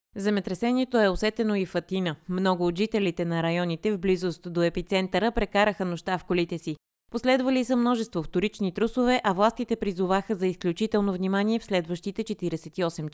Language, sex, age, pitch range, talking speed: Bulgarian, female, 20-39, 170-220 Hz, 155 wpm